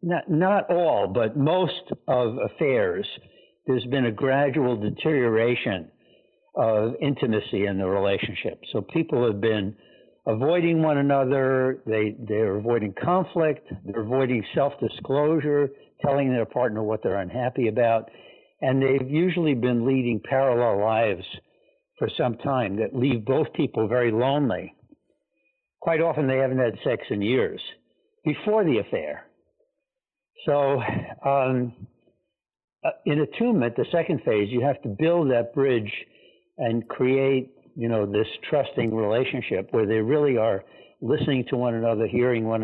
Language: English